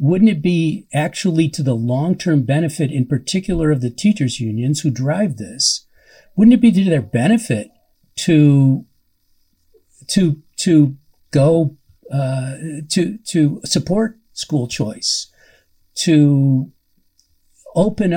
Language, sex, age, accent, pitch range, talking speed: English, male, 50-69, American, 135-175 Hz, 115 wpm